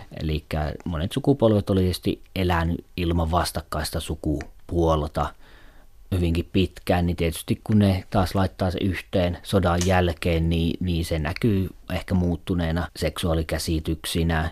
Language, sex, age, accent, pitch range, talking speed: Finnish, male, 30-49, native, 80-95 Hz, 115 wpm